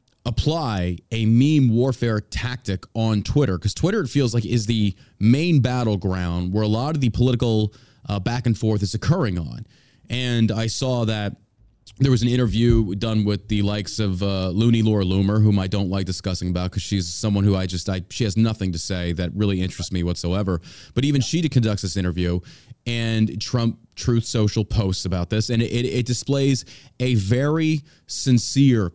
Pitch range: 100-125 Hz